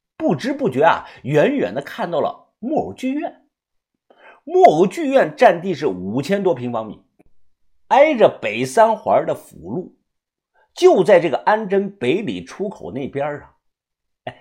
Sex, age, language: male, 50-69, Chinese